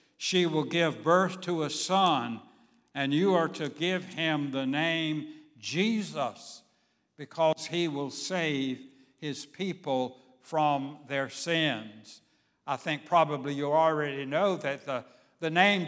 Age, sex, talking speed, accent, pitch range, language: 60-79, male, 130 wpm, American, 140-175 Hz, English